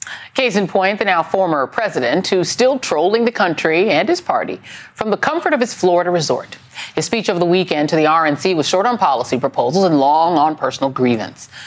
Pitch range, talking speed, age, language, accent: 150-195 Hz, 205 wpm, 40-59, English, American